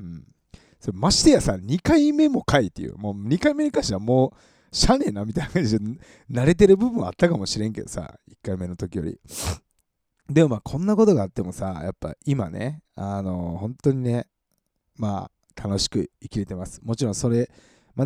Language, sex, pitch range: Japanese, male, 95-125 Hz